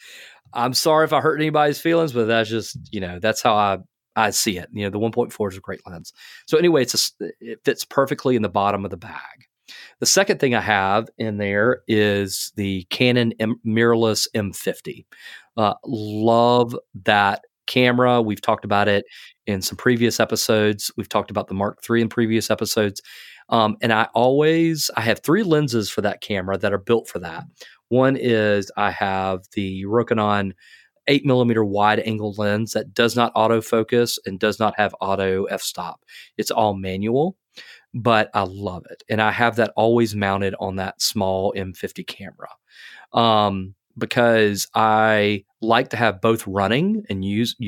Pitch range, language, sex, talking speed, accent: 100-120 Hz, English, male, 170 wpm, American